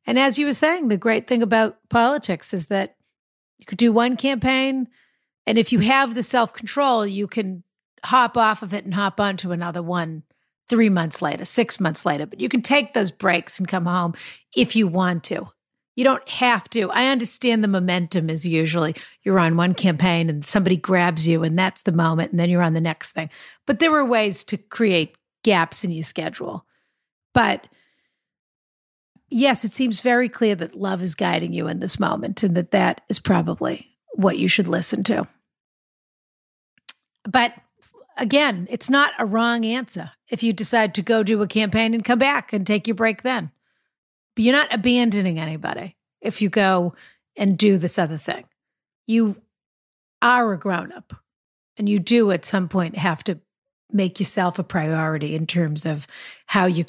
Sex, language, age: female, English, 50-69